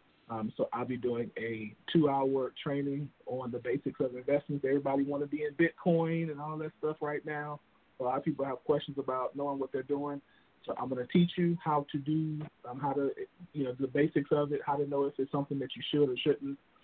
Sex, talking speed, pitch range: male, 230 wpm, 130-145 Hz